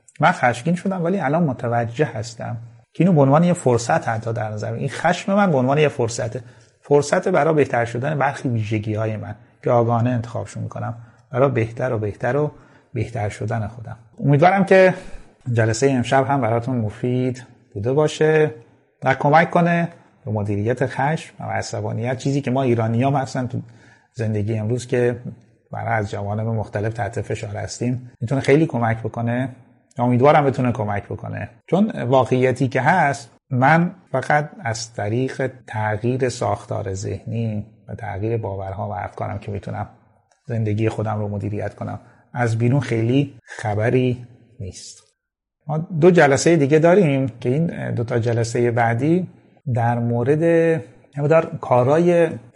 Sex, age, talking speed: male, 30-49, 145 wpm